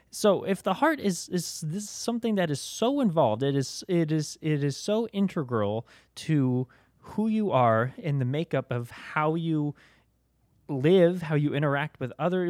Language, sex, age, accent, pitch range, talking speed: English, male, 20-39, American, 125-175 Hz, 175 wpm